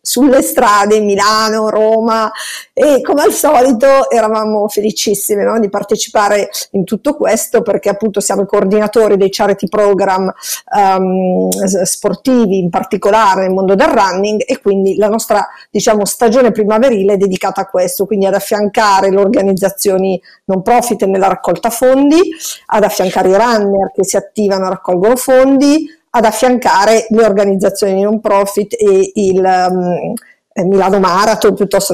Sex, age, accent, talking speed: female, 50-69, native, 140 wpm